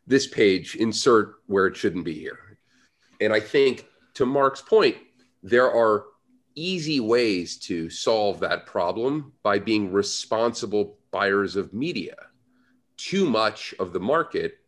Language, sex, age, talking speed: English, male, 40-59, 135 wpm